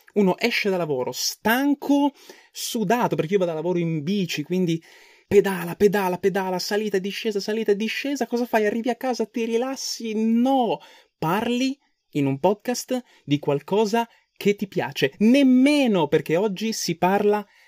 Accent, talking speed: native, 155 wpm